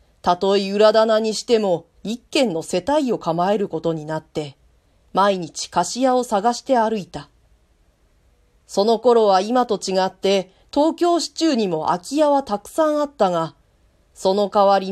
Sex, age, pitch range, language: female, 40-59, 175-255 Hz, Japanese